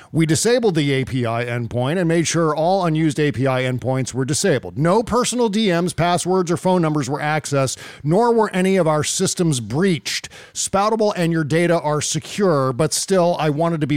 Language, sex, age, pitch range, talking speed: English, male, 50-69, 130-170 Hz, 180 wpm